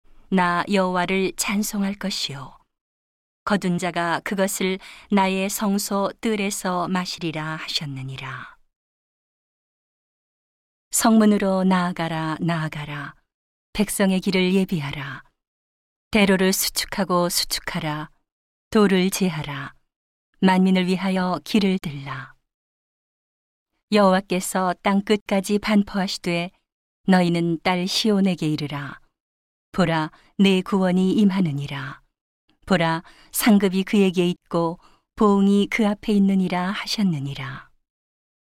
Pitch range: 165-195 Hz